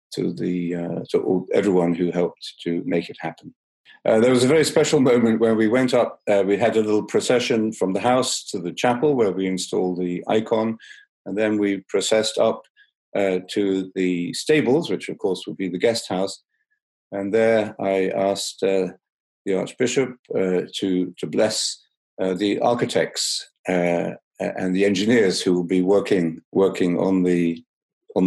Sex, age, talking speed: male, 50-69, 175 wpm